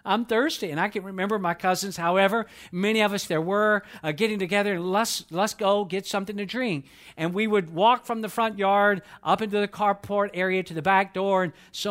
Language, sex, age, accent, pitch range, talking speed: English, male, 50-69, American, 170-220 Hz, 215 wpm